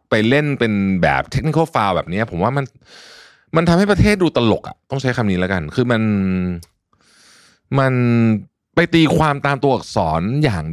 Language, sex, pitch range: Thai, male, 95-140 Hz